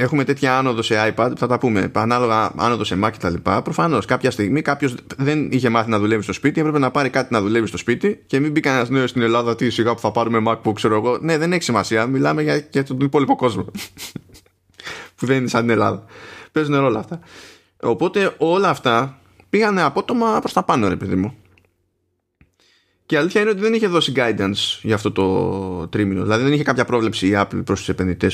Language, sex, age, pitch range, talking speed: Greek, male, 20-39, 105-135 Hz, 215 wpm